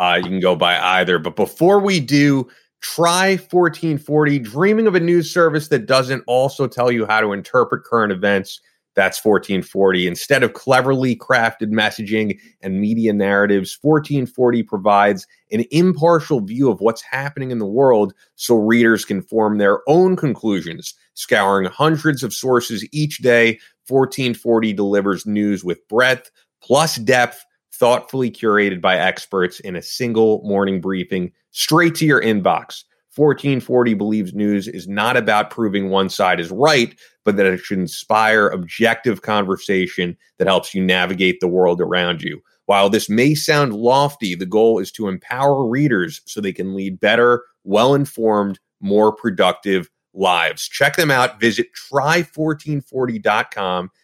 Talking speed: 145 wpm